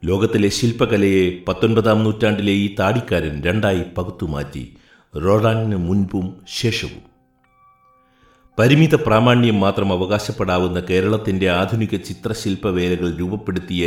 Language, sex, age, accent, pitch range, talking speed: Malayalam, male, 60-79, native, 85-105 Hz, 80 wpm